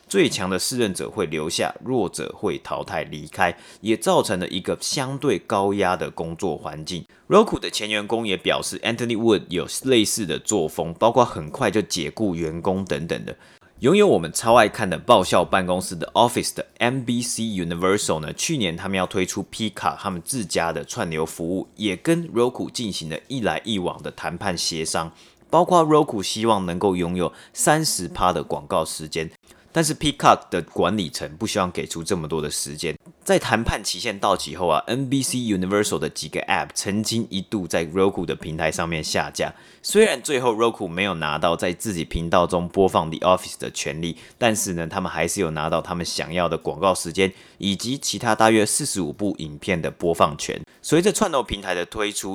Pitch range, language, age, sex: 85-115 Hz, Chinese, 30-49, male